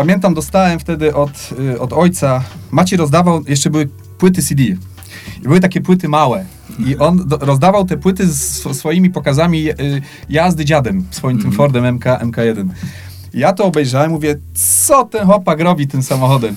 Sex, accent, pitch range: male, native, 120-150 Hz